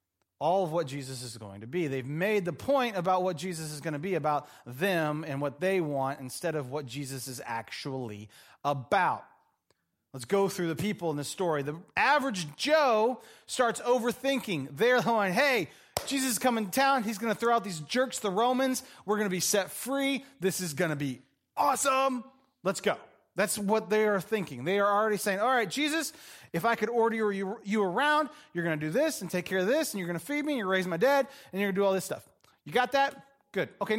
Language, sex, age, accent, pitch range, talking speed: English, male, 30-49, American, 160-250 Hz, 230 wpm